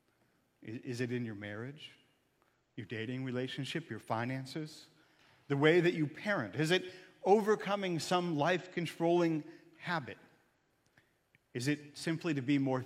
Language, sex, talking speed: English, male, 125 wpm